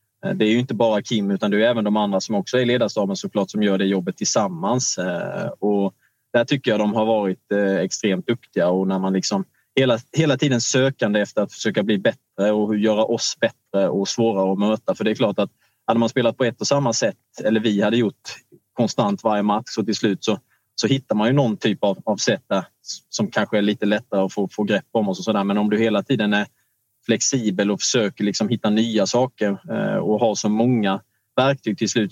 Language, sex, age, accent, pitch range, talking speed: Swedish, male, 20-39, Norwegian, 100-120 Hz, 225 wpm